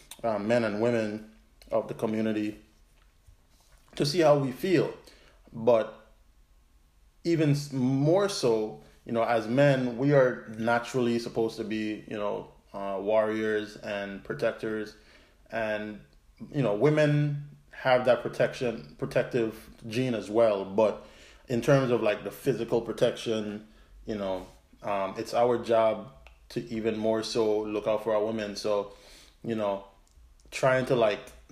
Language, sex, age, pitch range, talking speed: English, male, 20-39, 105-120 Hz, 135 wpm